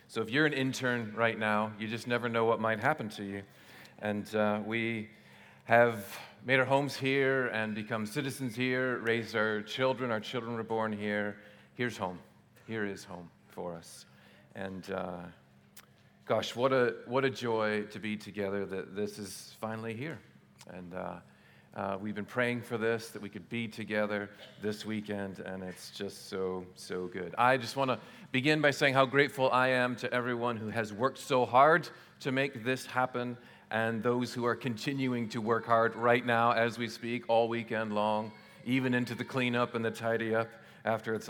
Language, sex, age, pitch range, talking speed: English, male, 40-59, 105-125 Hz, 185 wpm